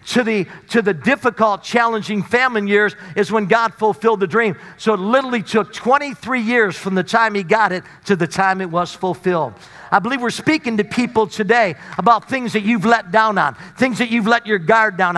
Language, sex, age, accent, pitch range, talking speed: English, male, 50-69, American, 215-300 Hz, 210 wpm